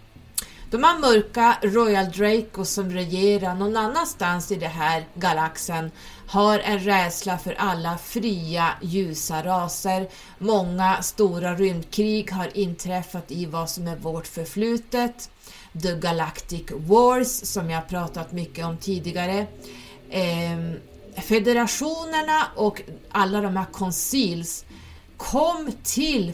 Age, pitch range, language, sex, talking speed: 30-49, 165-205 Hz, Swedish, female, 110 wpm